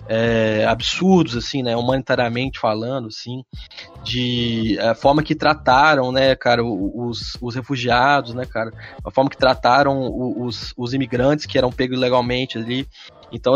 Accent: Brazilian